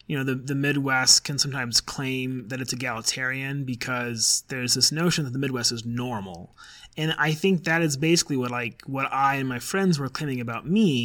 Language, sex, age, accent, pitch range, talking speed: English, male, 30-49, American, 125-155 Hz, 200 wpm